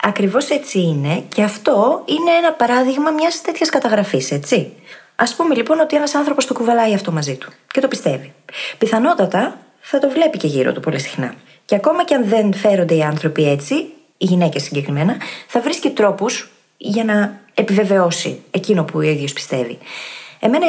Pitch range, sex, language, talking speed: 160-250 Hz, female, Greek, 170 wpm